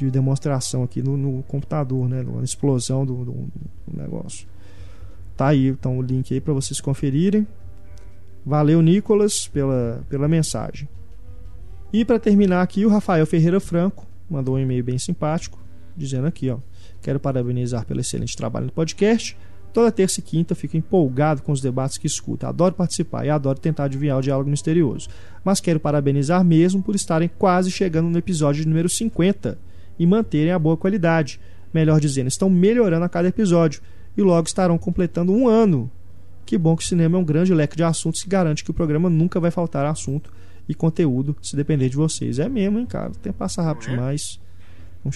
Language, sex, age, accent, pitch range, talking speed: Portuguese, male, 20-39, Brazilian, 130-175 Hz, 180 wpm